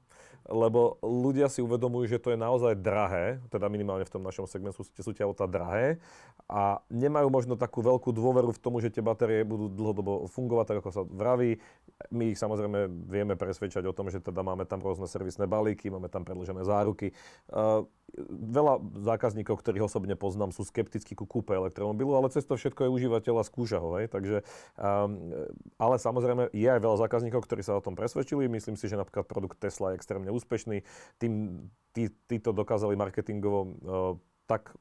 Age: 40-59